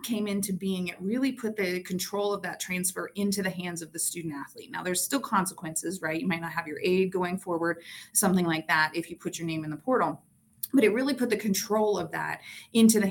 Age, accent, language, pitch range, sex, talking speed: 30-49, American, English, 170-205 Hz, female, 240 wpm